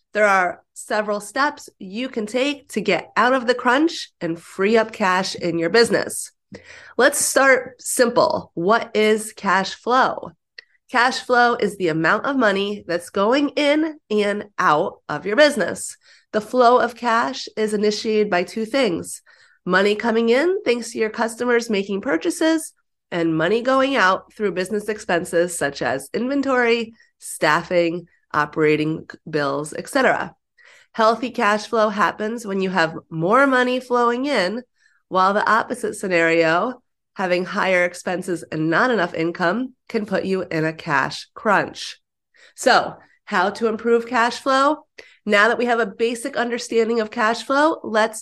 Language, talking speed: English, 150 wpm